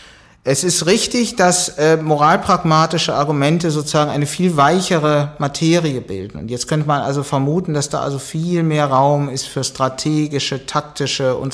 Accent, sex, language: German, male, German